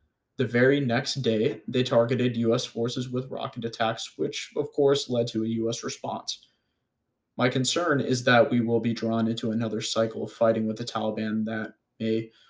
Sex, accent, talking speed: male, American, 180 wpm